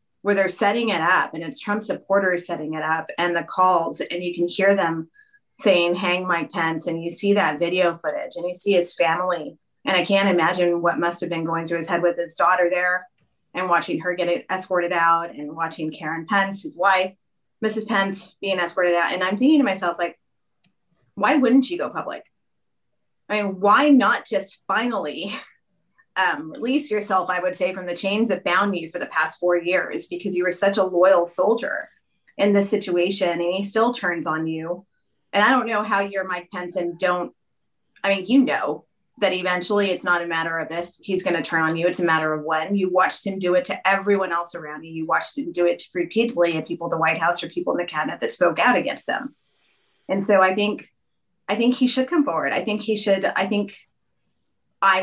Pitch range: 170-200 Hz